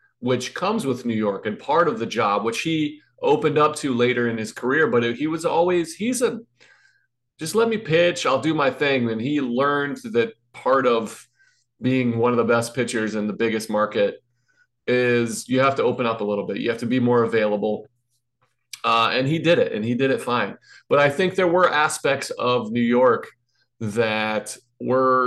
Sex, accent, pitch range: male, American, 120-160 Hz